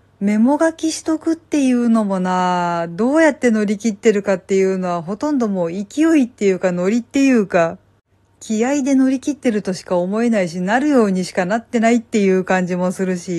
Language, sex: Japanese, female